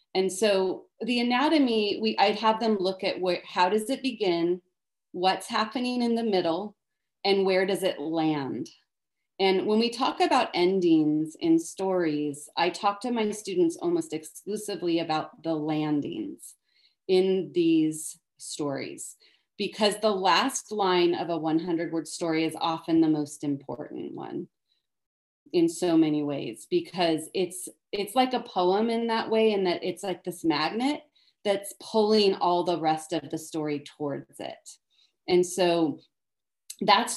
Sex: female